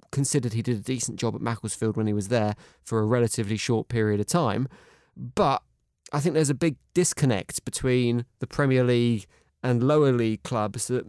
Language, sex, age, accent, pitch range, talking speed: English, male, 20-39, British, 110-140 Hz, 190 wpm